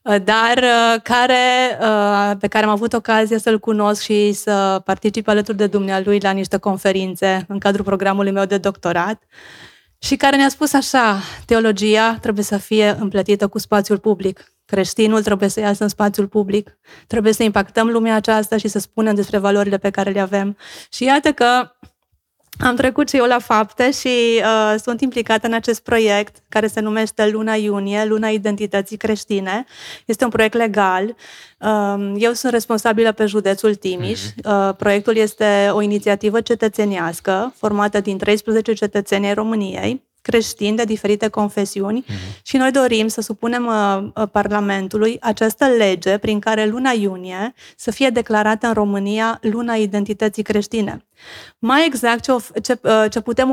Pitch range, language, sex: 205-235 Hz, Romanian, female